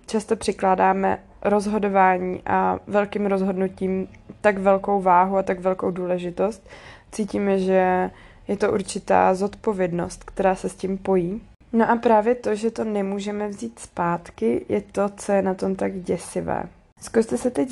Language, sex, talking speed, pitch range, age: Czech, female, 150 wpm, 185-210 Hz, 20-39